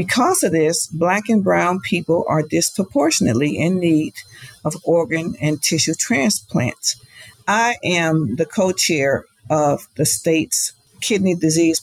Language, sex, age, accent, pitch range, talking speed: English, female, 50-69, American, 140-165 Hz, 125 wpm